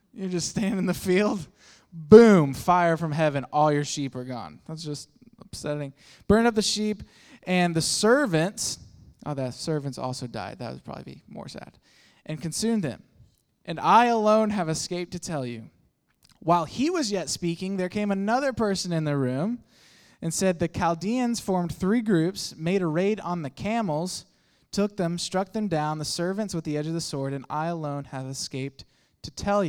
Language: English